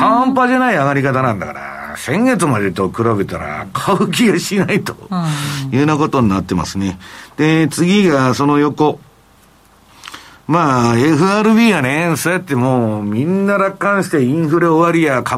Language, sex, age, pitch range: Japanese, male, 50-69, 110-170 Hz